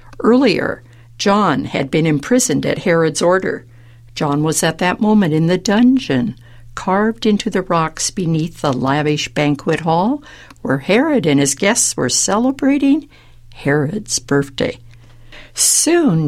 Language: English